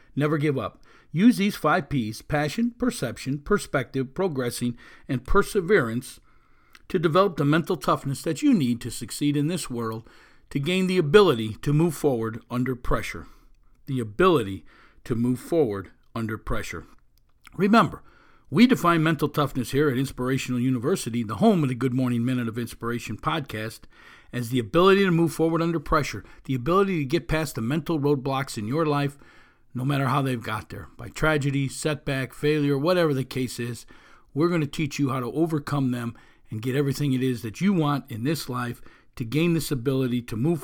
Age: 50-69